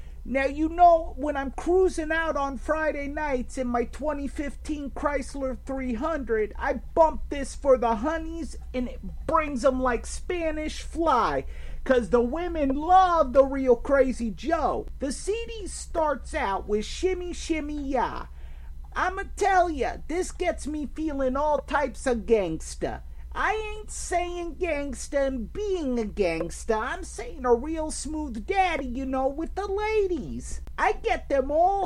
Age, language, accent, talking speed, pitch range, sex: 50-69, English, American, 145 wpm, 235-325 Hz, male